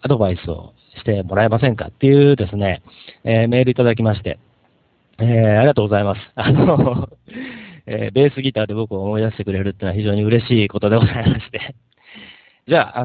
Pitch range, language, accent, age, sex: 100-130 Hz, Japanese, native, 40-59, male